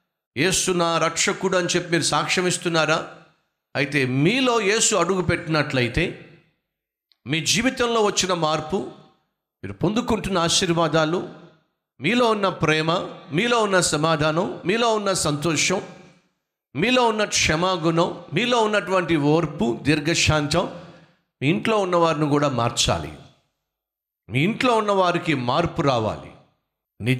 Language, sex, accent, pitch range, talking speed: Telugu, male, native, 155-190 Hz, 100 wpm